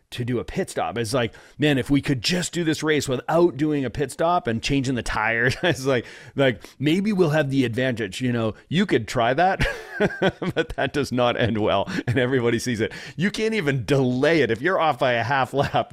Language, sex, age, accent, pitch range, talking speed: English, male, 40-59, American, 115-145 Hz, 225 wpm